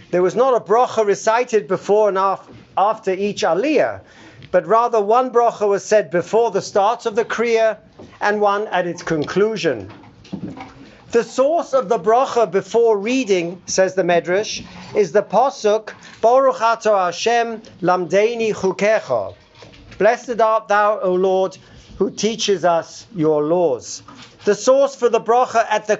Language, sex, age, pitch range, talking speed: English, male, 50-69, 185-230 Hz, 145 wpm